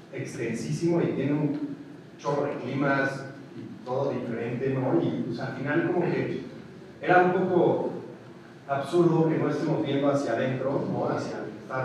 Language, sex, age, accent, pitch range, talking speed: Spanish, male, 40-59, Mexican, 125-150 Hz, 160 wpm